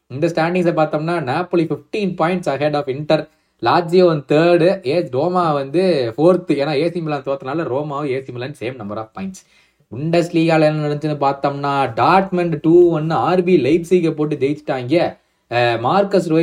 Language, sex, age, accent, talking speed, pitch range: Tamil, male, 20-39, native, 35 wpm, 135-180 Hz